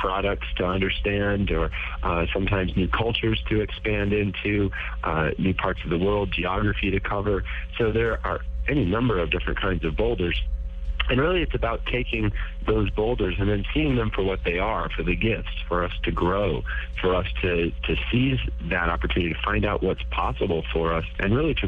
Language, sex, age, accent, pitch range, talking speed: Spanish, male, 50-69, American, 85-100 Hz, 190 wpm